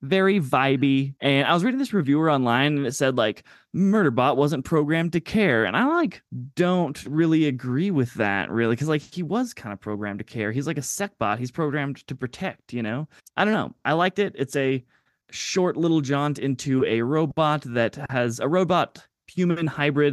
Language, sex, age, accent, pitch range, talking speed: English, male, 20-39, American, 120-155 Hz, 205 wpm